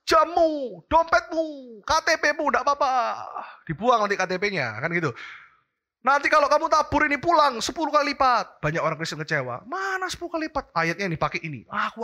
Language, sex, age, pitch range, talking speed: Indonesian, male, 20-39, 205-310 Hz, 160 wpm